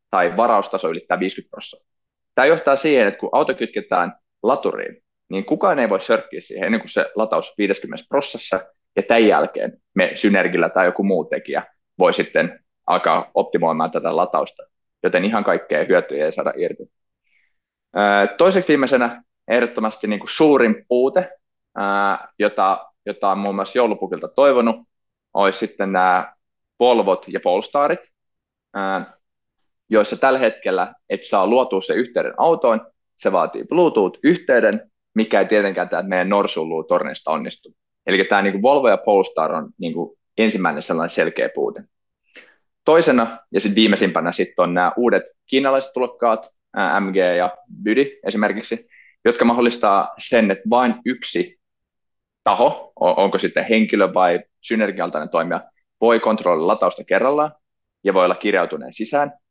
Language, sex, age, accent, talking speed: Finnish, male, 20-39, native, 130 wpm